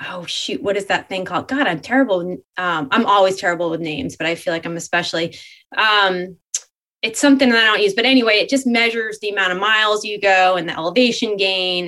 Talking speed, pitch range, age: 220 wpm, 185-230 Hz, 20-39